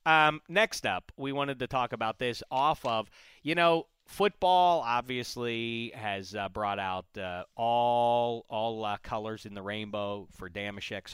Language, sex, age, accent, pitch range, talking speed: English, male, 40-59, American, 105-150 Hz, 155 wpm